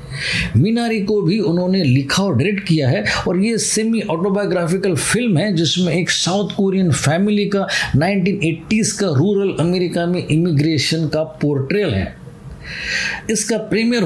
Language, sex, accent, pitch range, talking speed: Hindi, male, native, 155-205 Hz, 135 wpm